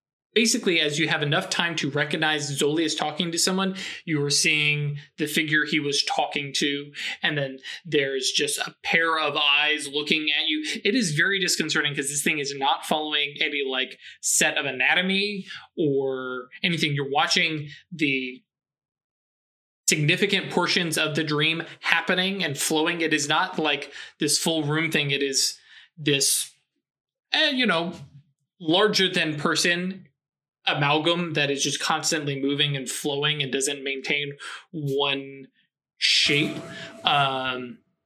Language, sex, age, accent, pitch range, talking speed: English, male, 20-39, American, 145-165 Hz, 145 wpm